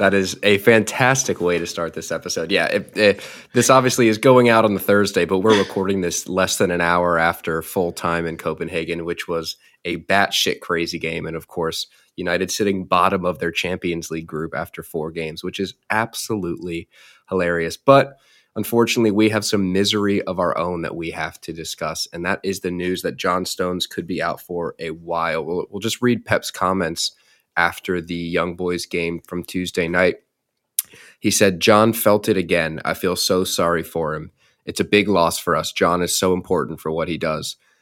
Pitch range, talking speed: 85-105 Hz, 195 wpm